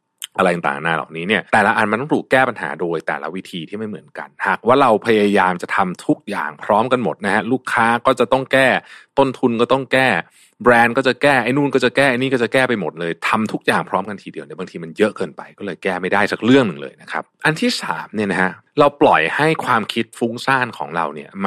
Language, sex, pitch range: Thai, male, 110-145 Hz